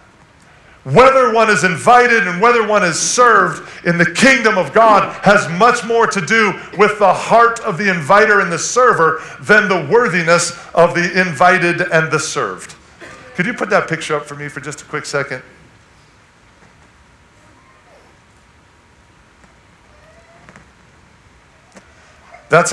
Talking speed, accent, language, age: 135 wpm, American, English, 40-59